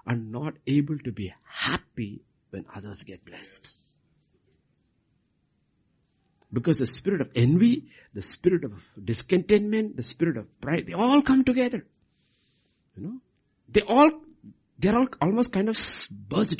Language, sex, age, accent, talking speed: English, male, 60-79, Indian, 130 wpm